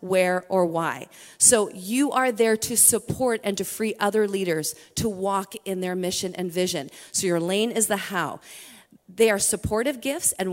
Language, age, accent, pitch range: English, 40-59, American, 185-245 Hz